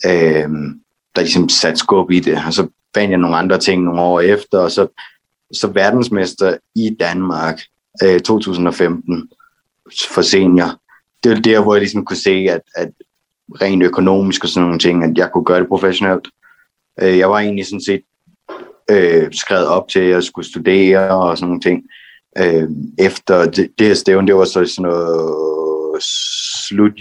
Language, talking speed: Danish, 175 wpm